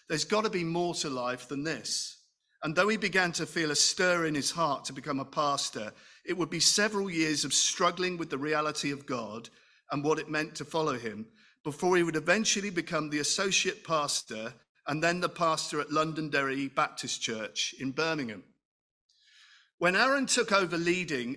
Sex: male